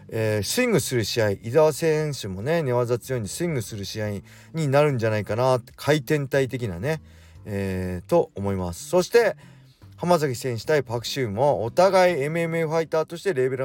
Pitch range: 100-155 Hz